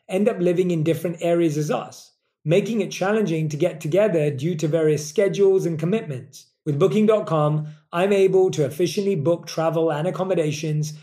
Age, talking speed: 30-49, 165 wpm